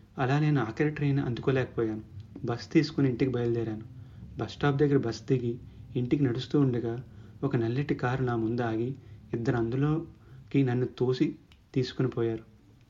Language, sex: Telugu, male